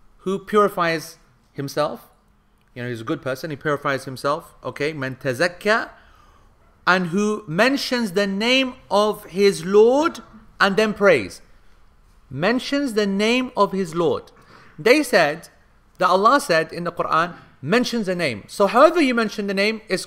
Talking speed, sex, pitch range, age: 145 wpm, male, 145-200 Hz, 40-59